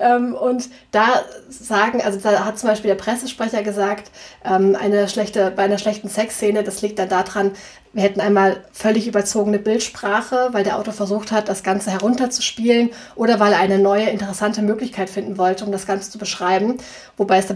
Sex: female